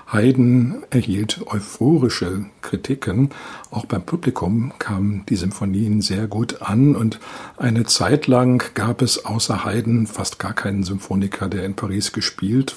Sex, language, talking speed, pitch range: male, German, 135 wpm, 100-125 Hz